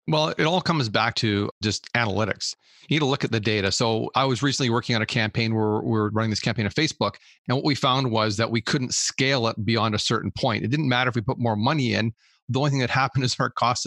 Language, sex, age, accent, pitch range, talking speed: English, male, 40-59, American, 110-130 Hz, 270 wpm